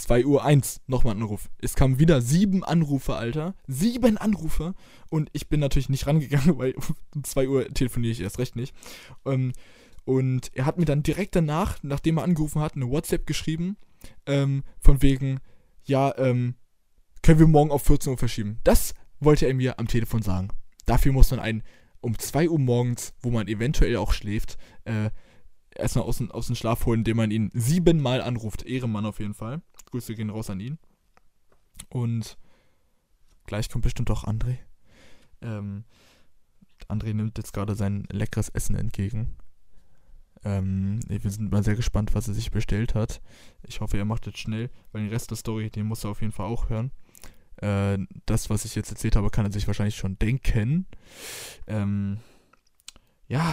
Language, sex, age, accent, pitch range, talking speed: German, male, 20-39, German, 105-135 Hz, 175 wpm